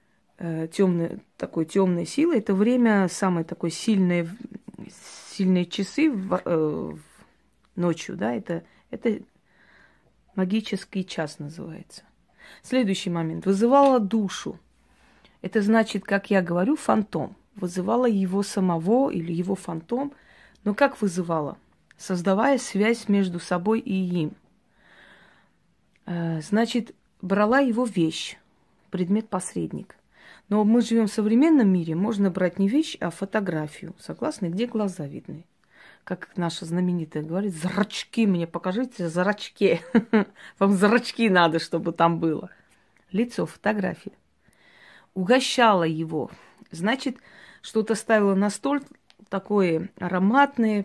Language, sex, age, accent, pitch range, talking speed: Russian, female, 30-49, native, 175-225 Hz, 105 wpm